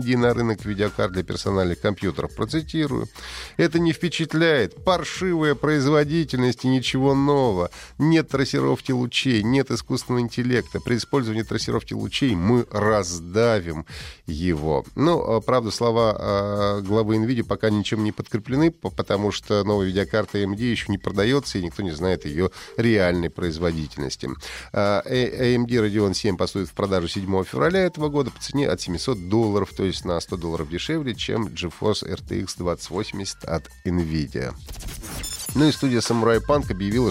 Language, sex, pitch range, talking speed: Russian, male, 95-135 Hz, 135 wpm